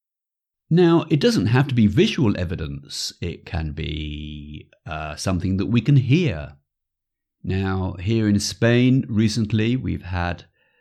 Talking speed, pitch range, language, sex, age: 135 wpm, 85-115 Hz, English, male, 50-69